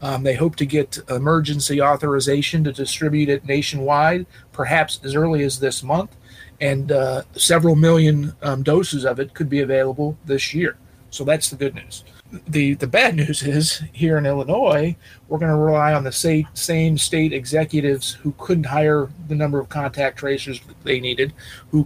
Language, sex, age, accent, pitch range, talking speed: English, male, 40-59, American, 130-155 Hz, 175 wpm